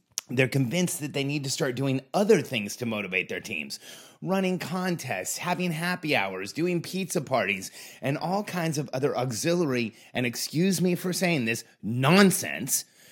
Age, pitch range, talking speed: 30-49, 135-180 Hz, 160 wpm